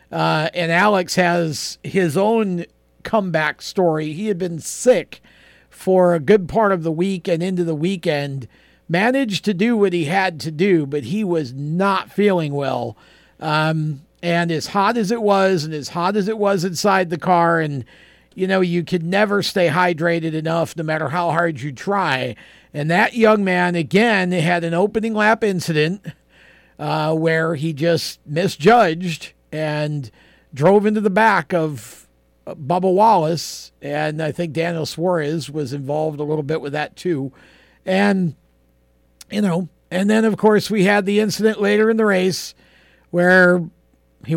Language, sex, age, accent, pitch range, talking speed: English, male, 50-69, American, 155-195 Hz, 165 wpm